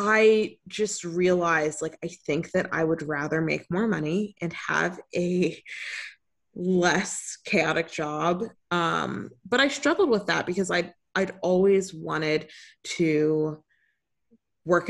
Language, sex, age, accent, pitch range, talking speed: English, female, 20-39, American, 160-190 Hz, 130 wpm